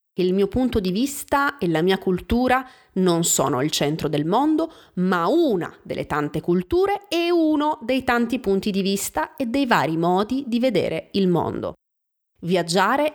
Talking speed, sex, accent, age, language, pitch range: 165 wpm, female, native, 30-49, Italian, 180-260 Hz